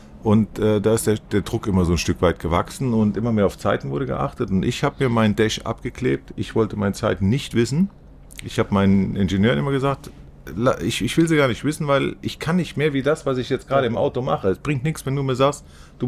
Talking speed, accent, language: 255 wpm, German, German